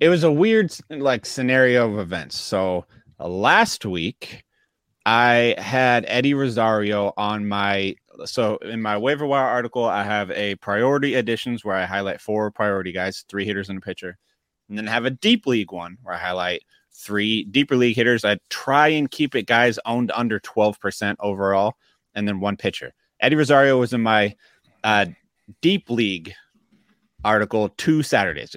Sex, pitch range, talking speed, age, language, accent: male, 105-135 Hz, 165 wpm, 30-49, English, American